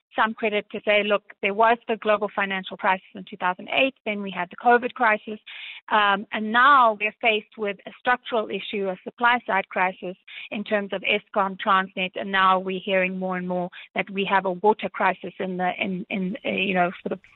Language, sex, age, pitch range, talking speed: English, female, 30-49, 195-235 Hz, 200 wpm